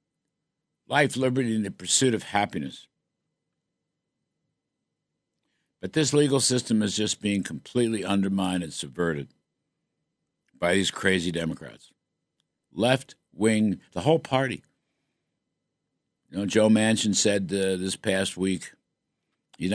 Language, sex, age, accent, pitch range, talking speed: English, male, 60-79, American, 95-130 Hz, 110 wpm